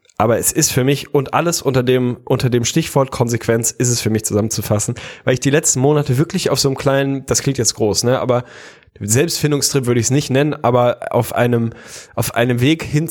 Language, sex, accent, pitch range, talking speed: German, male, German, 115-140 Hz, 215 wpm